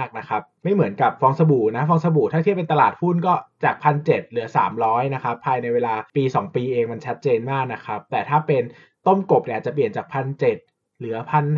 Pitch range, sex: 115-160 Hz, male